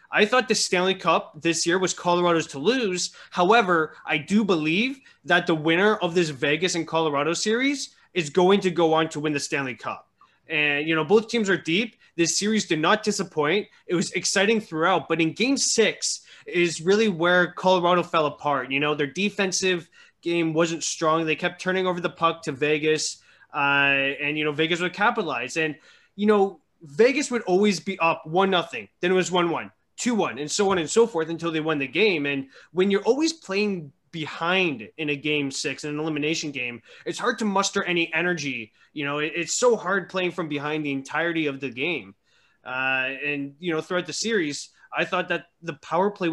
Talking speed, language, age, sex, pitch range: 200 wpm, English, 20-39, male, 150-190 Hz